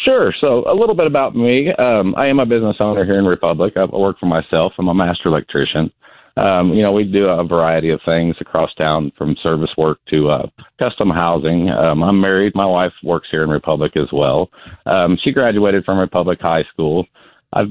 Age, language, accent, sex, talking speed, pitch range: 40-59, English, American, male, 205 wpm, 80-100 Hz